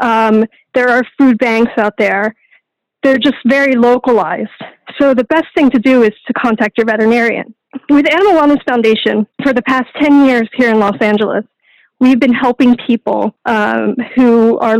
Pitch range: 225-270 Hz